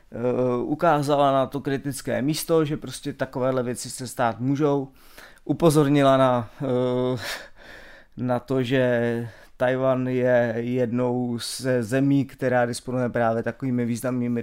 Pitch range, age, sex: 120-140 Hz, 30-49, male